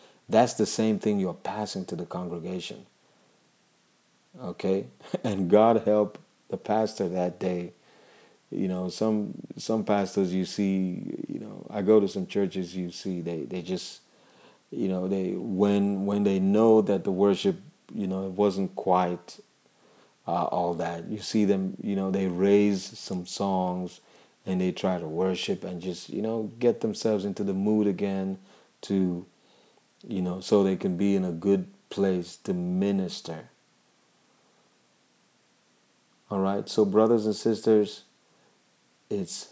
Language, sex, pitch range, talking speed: English, male, 90-105 Hz, 145 wpm